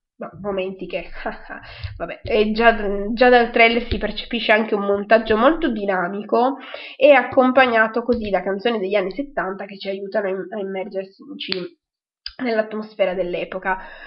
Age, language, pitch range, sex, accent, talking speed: 20-39, Italian, 195-245 Hz, female, native, 140 wpm